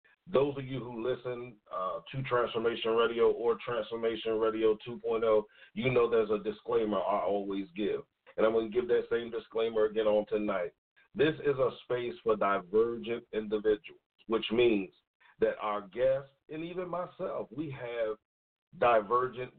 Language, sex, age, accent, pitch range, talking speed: English, male, 40-59, American, 115-175 Hz, 155 wpm